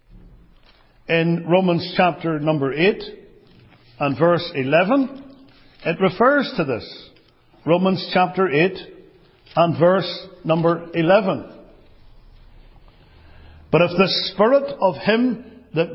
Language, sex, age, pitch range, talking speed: English, male, 60-79, 170-220 Hz, 100 wpm